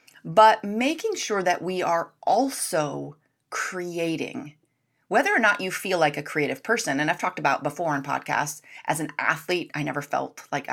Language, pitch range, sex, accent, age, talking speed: English, 150-195 Hz, female, American, 30-49, 175 wpm